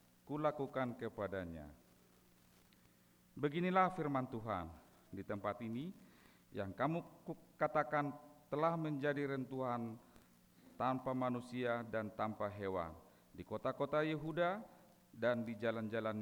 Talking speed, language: 95 wpm, Malay